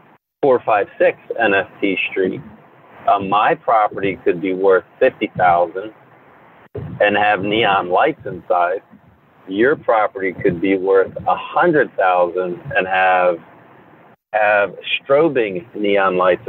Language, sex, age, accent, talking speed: English, male, 40-59, American, 115 wpm